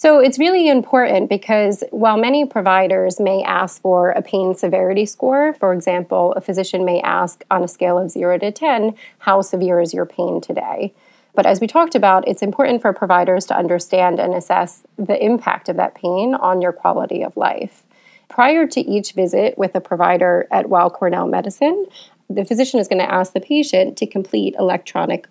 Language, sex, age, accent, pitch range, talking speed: English, female, 30-49, American, 185-220 Hz, 185 wpm